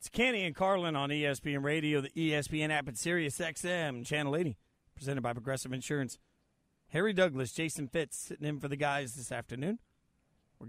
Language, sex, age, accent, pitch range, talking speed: English, male, 40-59, American, 130-170 Hz, 170 wpm